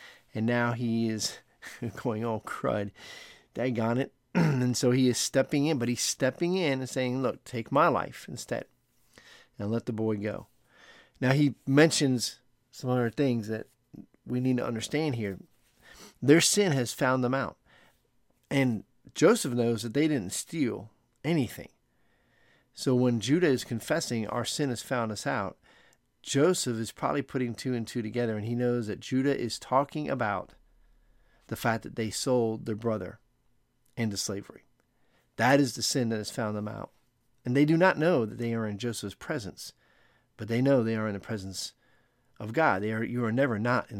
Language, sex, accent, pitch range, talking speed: English, male, American, 110-130 Hz, 175 wpm